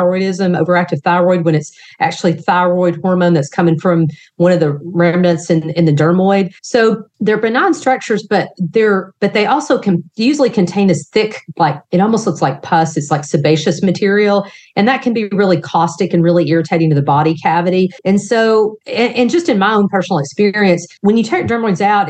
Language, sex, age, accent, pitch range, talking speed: English, female, 40-59, American, 155-190 Hz, 195 wpm